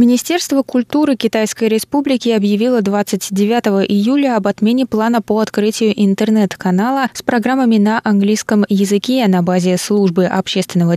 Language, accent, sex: Russian, native, female